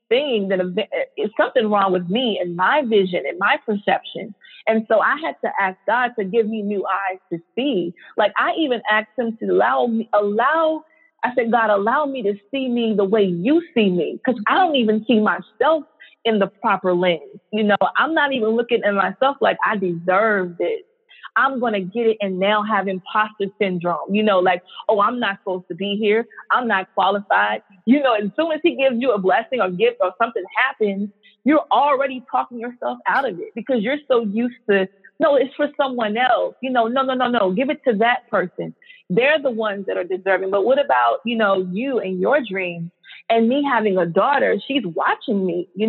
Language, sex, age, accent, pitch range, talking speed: English, female, 30-49, American, 195-260 Hz, 210 wpm